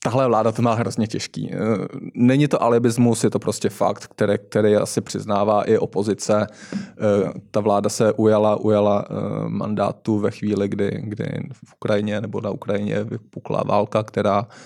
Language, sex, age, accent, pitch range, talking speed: Czech, male, 20-39, native, 105-115 Hz, 150 wpm